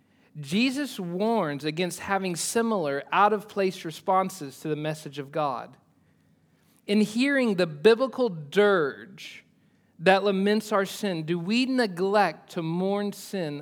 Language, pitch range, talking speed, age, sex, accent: English, 155-205 Hz, 130 wpm, 40-59, male, American